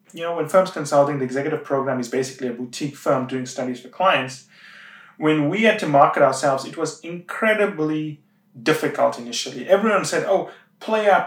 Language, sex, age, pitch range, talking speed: English, male, 30-49, 140-190 Hz, 175 wpm